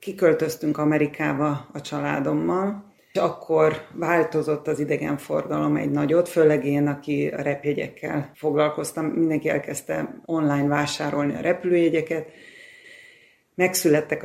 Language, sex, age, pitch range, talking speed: Hungarian, female, 30-49, 145-170 Hz, 100 wpm